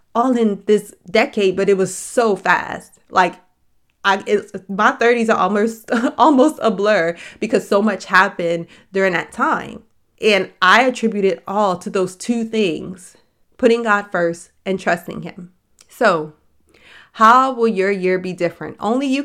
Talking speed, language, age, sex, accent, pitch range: 155 wpm, English, 30-49, female, American, 180-220 Hz